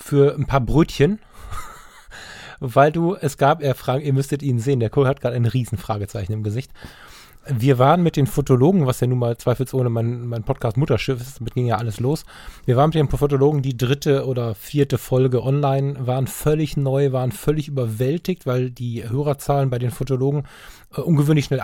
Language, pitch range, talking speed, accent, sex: German, 130-150 Hz, 190 wpm, German, male